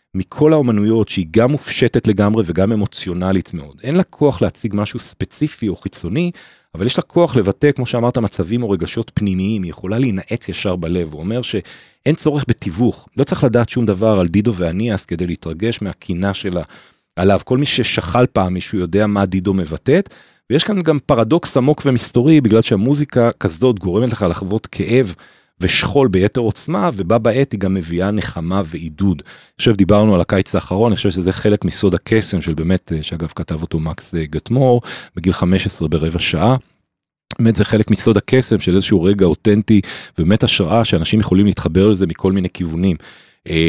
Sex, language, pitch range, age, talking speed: male, Hebrew, 95-120 Hz, 40-59, 170 wpm